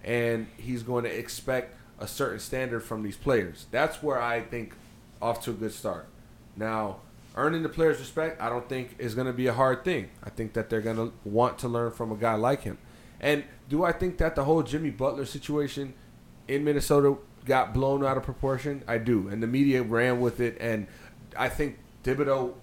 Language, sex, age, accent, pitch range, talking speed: English, male, 30-49, American, 115-145 Hz, 205 wpm